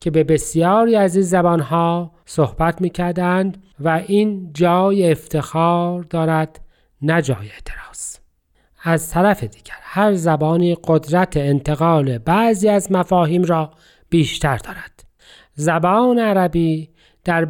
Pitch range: 155-190 Hz